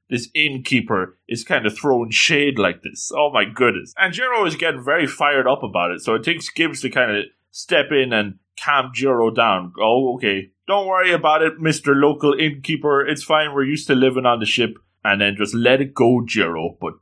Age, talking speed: 20-39, 210 wpm